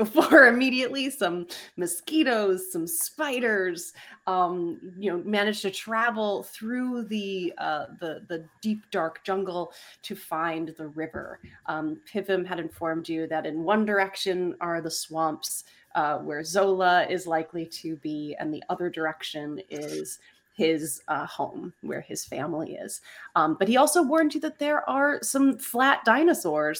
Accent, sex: American, female